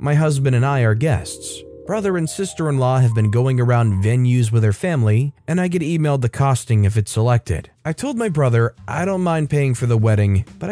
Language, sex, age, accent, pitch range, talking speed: English, male, 30-49, American, 115-150 Hz, 215 wpm